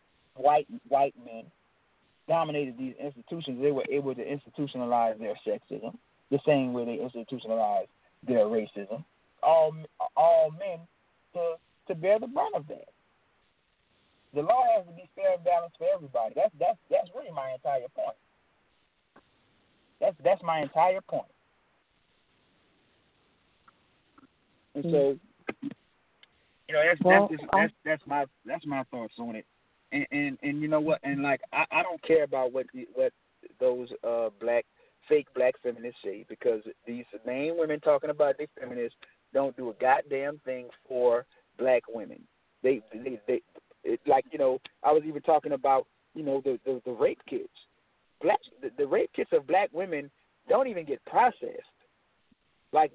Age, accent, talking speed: 30-49, American, 160 wpm